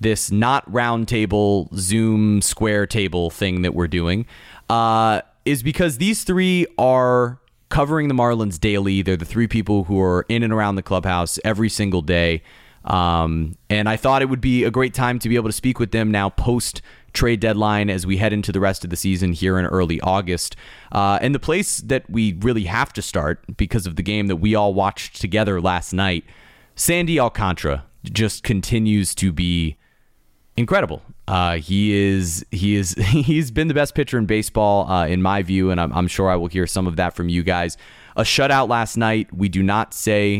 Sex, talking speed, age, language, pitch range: male, 200 wpm, 30-49, English, 90-115 Hz